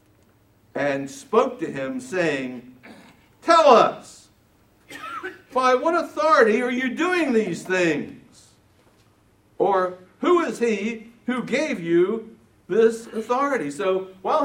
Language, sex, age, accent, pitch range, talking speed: English, male, 60-79, American, 160-245 Hz, 110 wpm